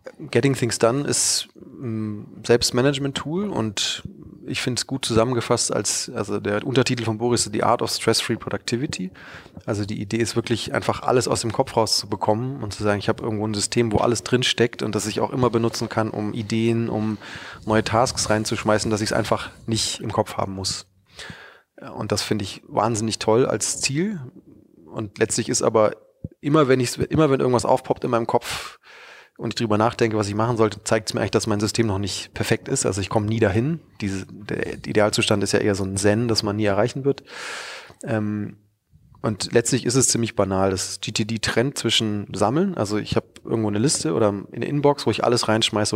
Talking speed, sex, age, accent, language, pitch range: 200 wpm, male, 20-39, German, German, 105-120 Hz